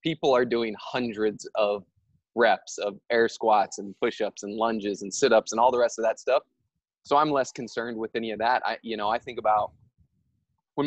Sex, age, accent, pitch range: male, 20-39, American, 105-125 Hz